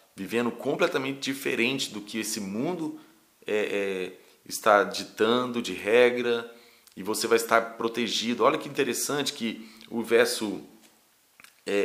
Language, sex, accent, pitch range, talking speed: Portuguese, male, Brazilian, 105-130 Hz, 125 wpm